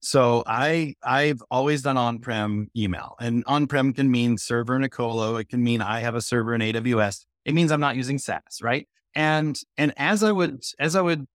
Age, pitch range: 30-49, 115-140 Hz